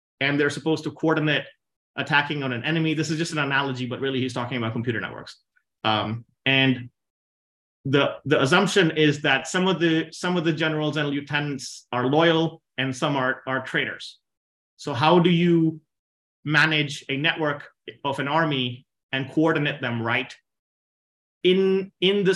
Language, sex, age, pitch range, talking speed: English, male, 30-49, 130-155 Hz, 165 wpm